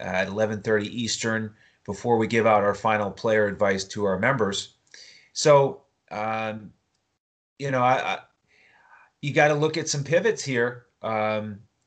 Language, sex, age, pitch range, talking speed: English, male, 30-49, 105-135 Hz, 145 wpm